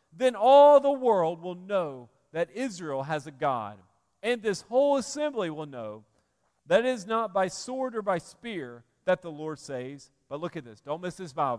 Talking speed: 195 wpm